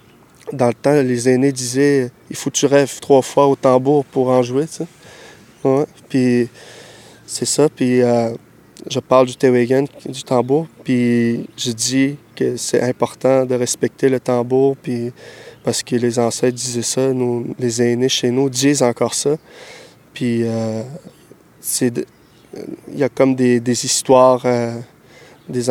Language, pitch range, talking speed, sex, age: French, 125-140 Hz, 155 wpm, male, 20-39